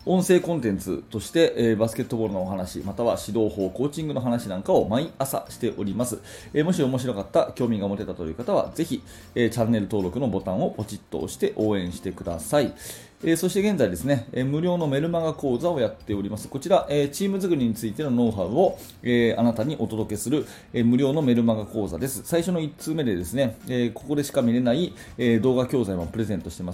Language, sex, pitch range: Japanese, male, 100-135 Hz